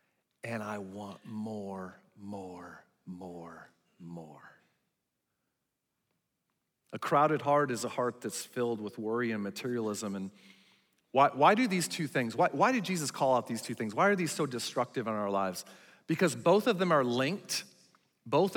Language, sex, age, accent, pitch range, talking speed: English, male, 40-59, American, 115-160 Hz, 160 wpm